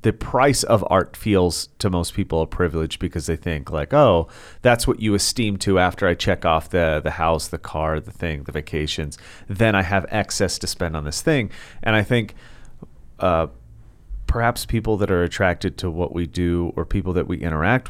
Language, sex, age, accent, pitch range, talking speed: English, male, 30-49, American, 80-105 Hz, 200 wpm